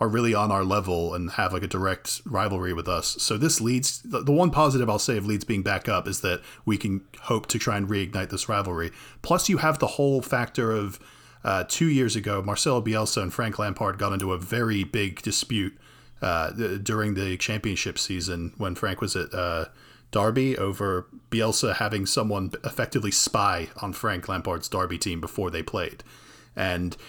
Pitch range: 95-120 Hz